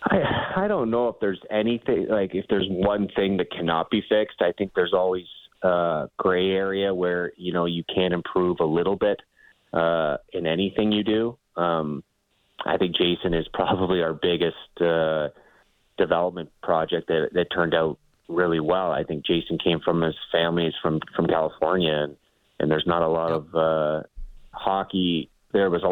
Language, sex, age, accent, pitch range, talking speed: English, male, 30-49, American, 80-90 Hz, 180 wpm